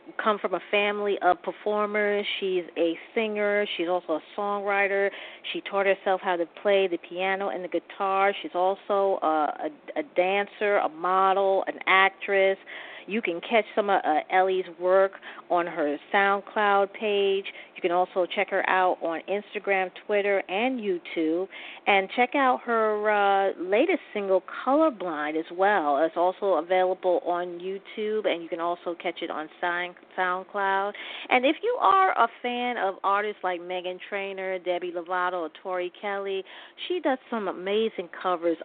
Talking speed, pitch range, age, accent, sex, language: 155 wpm, 180-215 Hz, 40-59, American, female, English